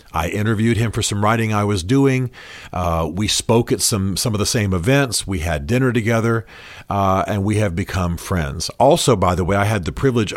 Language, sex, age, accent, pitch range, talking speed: English, male, 50-69, American, 90-115 Hz, 215 wpm